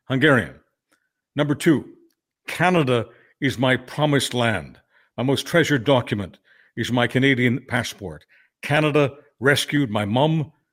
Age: 60-79